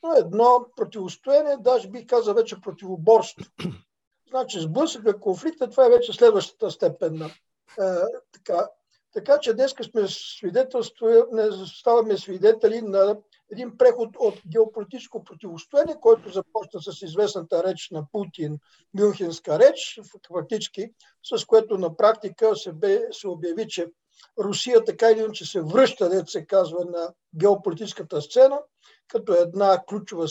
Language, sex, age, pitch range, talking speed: Bulgarian, male, 60-79, 195-265 Hz, 125 wpm